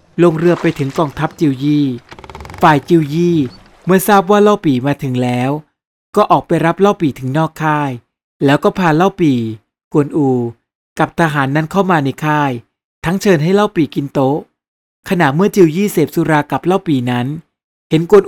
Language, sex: Thai, male